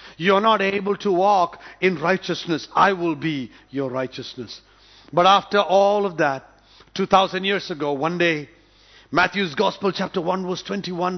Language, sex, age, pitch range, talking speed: English, male, 50-69, 155-195 Hz, 155 wpm